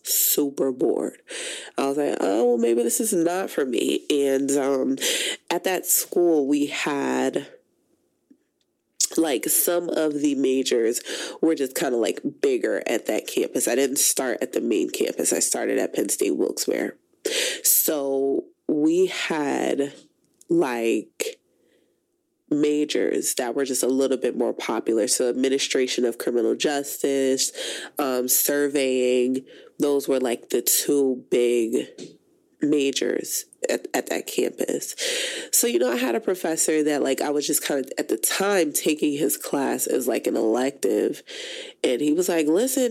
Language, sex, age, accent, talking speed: English, female, 20-39, American, 150 wpm